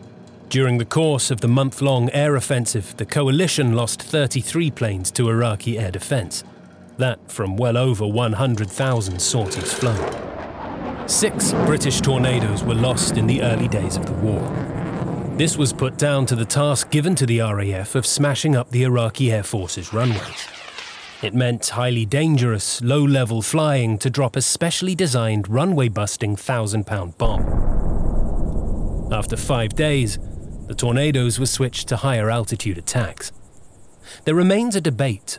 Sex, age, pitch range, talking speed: male, 30-49, 105-135 Hz, 140 wpm